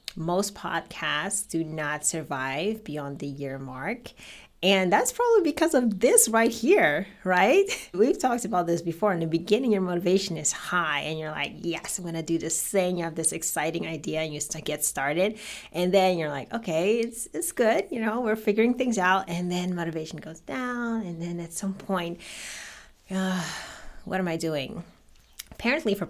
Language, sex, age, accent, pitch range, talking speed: English, female, 30-49, American, 165-215 Hz, 185 wpm